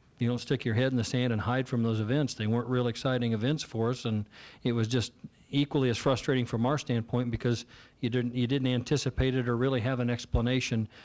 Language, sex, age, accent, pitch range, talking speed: English, male, 50-69, American, 115-130 Hz, 230 wpm